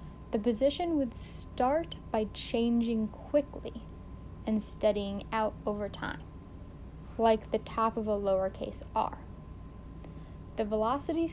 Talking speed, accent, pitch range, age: 110 wpm, American, 195-260 Hz, 10-29